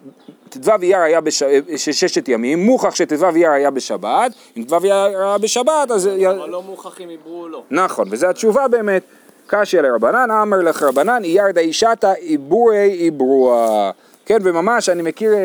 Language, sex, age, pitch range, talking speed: Hebrew, male, 30-49, 150-220 Hz, 165 wpm